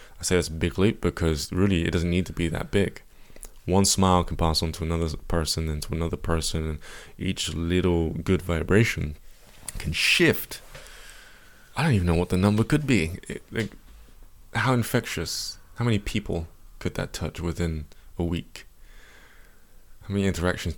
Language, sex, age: English, male, 20-39